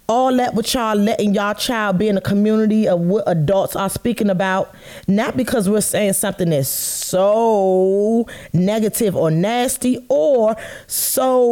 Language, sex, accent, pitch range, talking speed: English, female, American, 185-240 Hz, 150 wpm